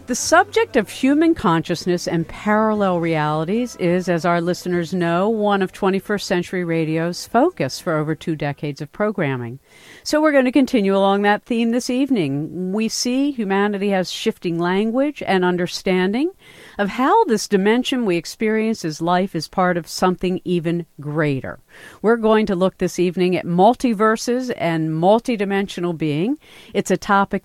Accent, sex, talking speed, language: American, female, 155 wpm, English